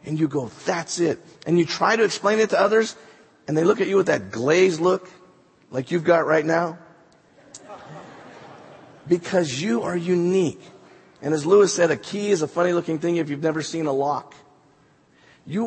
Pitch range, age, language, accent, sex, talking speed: 135-170 Hz, 50-69, English, American, male, 190 wpm